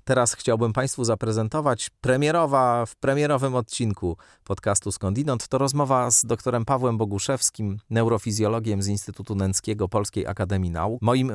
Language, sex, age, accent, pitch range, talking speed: Polish, male, 30-49, native, 95-125 Hz, 125 wpm